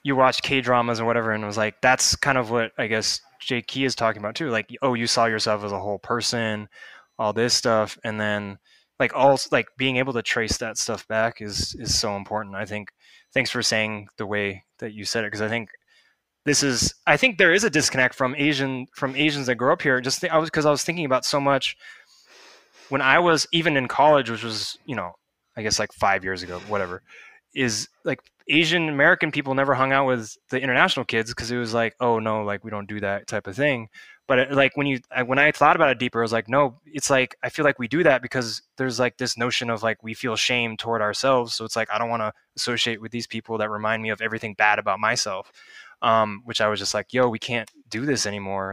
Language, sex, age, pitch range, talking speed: English, male, 20-39, 110-135 Hz, 250 wpm